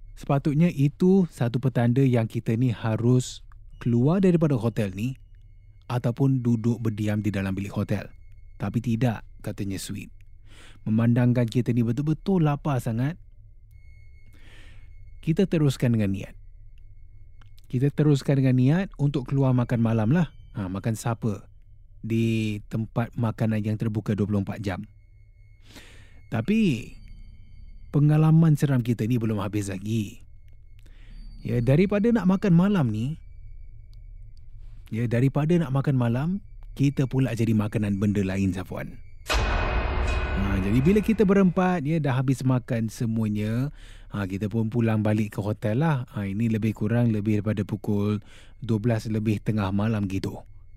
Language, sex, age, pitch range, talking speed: Malay, male, 20-39, 105-135 Hz, 130 wpm